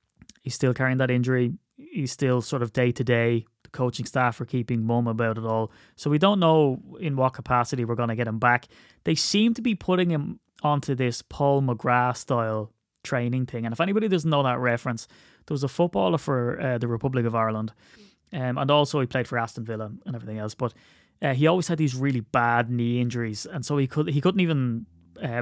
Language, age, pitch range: English, 20-39, 120-145 Hz